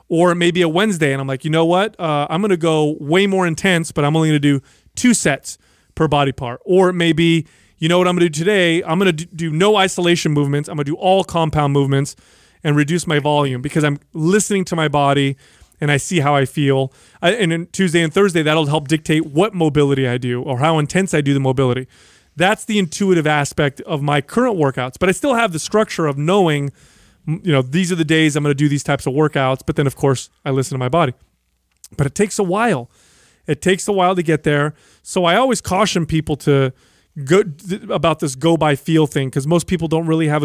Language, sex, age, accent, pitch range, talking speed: English, male, 30-49, American, 145-175 Hz, 235 wpm